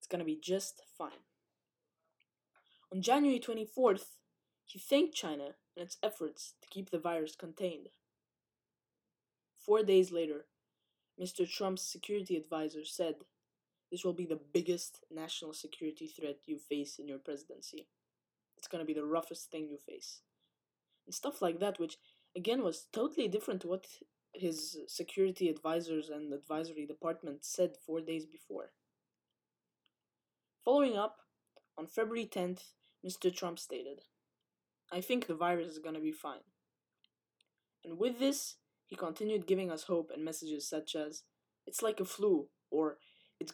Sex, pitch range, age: female, 160-190 Hz, 10-29